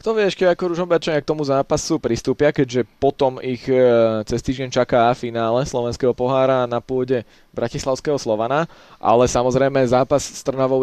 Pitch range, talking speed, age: 125-145 Hz, 150 wpm, 20-39